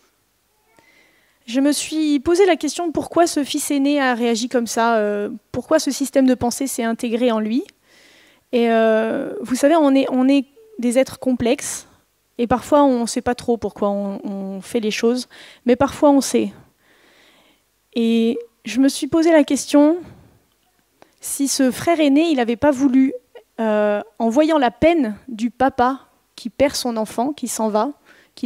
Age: 20-39